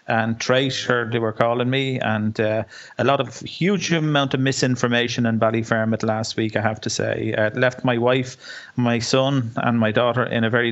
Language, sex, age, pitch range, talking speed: English, male, 30-49, 115-125 Hz, 200 wpm